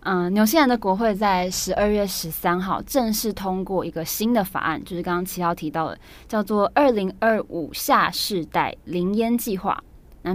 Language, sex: Chinese, female